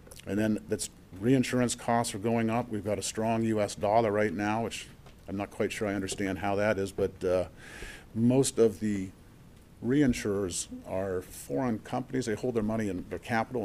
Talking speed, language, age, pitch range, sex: 185 wpm, English, 50-69, 95-120 Hz, male